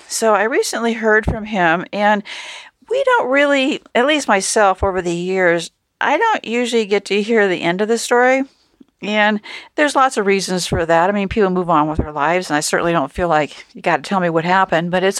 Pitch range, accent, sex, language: 180-230 Hz, American, female, English